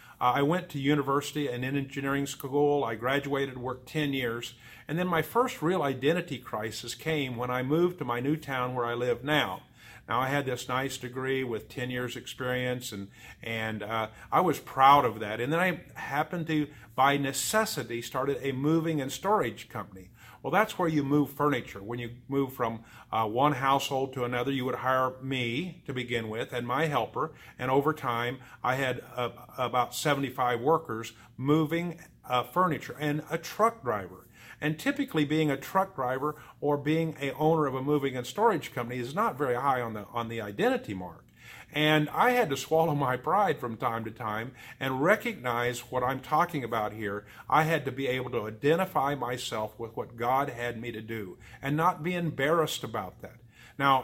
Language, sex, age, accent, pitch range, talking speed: English, male, 40-59, American, 120-150 Hz, 190 wpm